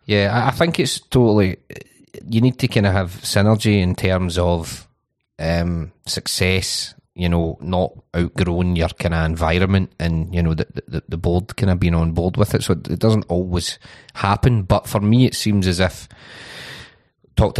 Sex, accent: male, British